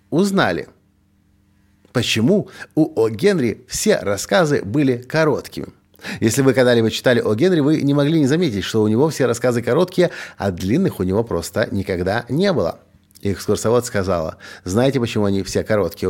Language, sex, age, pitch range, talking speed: Russian, male, 50-69, 100-145 Hz, 155 wpm